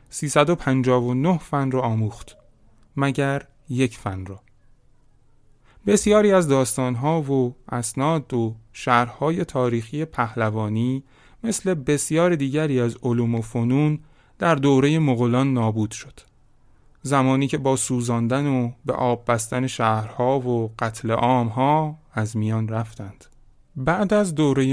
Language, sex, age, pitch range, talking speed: Persian, male, 30-49, 115-140 Hz, 115 wpm